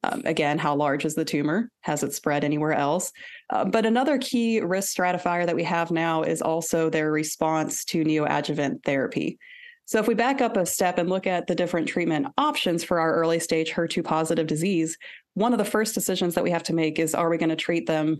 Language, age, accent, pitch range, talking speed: English, 30-49, American, 160-205 Hz, 220 wpm